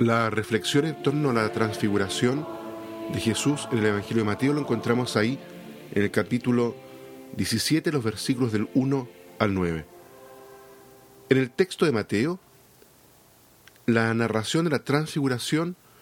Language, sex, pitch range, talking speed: Spanish, male, 110-140 Hz, 140 wpm